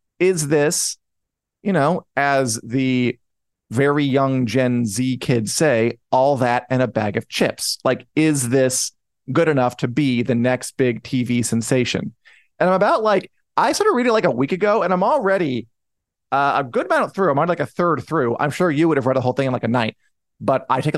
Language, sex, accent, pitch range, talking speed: English, male, American, 125-180 Hz, 215 wpm